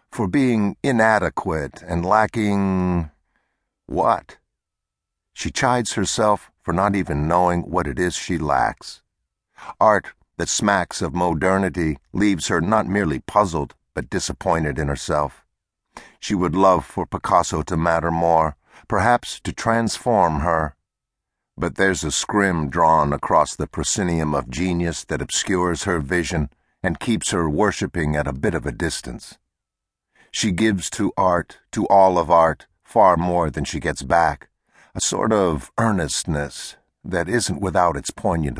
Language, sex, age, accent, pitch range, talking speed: English, male, 50-69, American, 80-95 Hz, 140 wpm